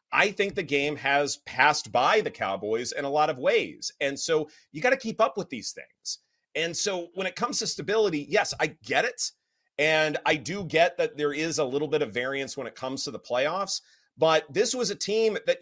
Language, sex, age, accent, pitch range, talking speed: English, male, 30-49, American, 150-220 Hz, 225 wpm